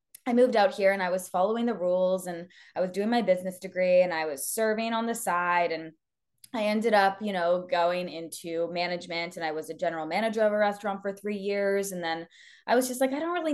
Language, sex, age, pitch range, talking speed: English, female, 20-39, 180-240 Hz, 240 wpm